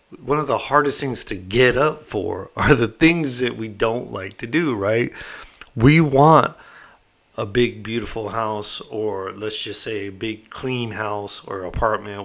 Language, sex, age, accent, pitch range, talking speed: English, male, 50-69, American, 110-160 Hz, 170 wpm